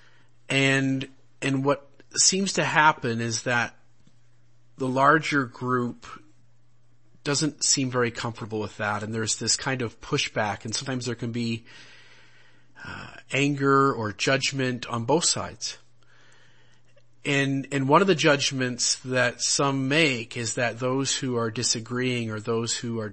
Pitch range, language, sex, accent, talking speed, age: 120-140 Hz, English, male, American, 140 wpm, 40-59